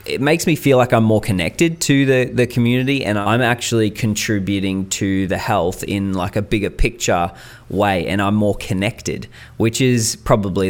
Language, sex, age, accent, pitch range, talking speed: English, male, 20-39, Australian, 90-110 Hz, 180 wpm